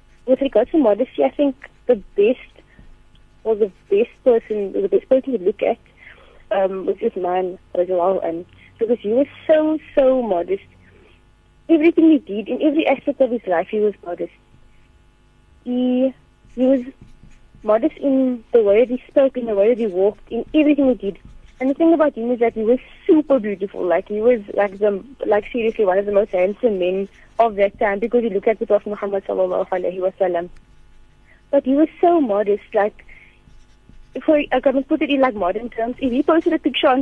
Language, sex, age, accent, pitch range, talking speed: English, female, 30-49, Indian, 200-275 Hz, 200 wpm